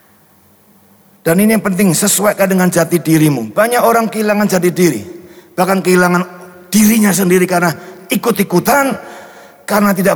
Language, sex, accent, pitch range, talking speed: Indonesian, male, native, 175-245 Hz, 125 wpm